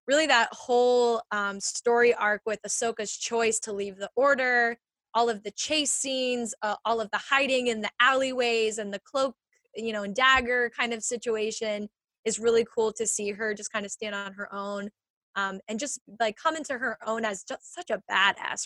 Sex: female